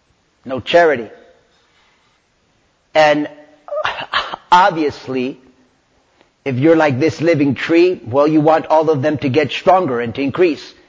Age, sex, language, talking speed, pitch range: 40-59, male, English, 120 wpm, 150-200 Hz